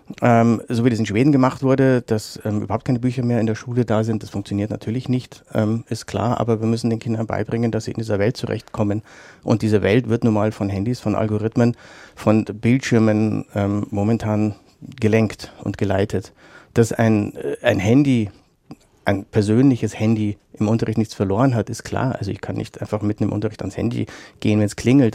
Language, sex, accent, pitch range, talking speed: German, male, German, 105-120 Hz, 200 wpm